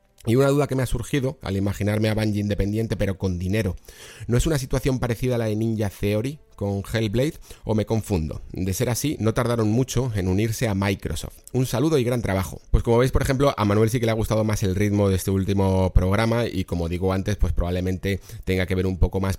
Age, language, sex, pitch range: 30-49, Spanish, male, 90-110 Hz